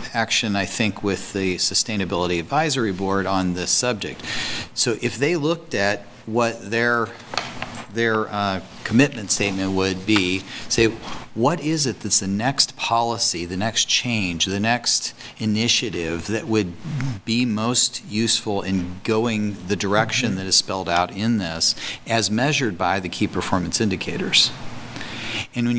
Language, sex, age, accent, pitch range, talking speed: English, male, 40-59, American, 95-120 Hz, 140 wpm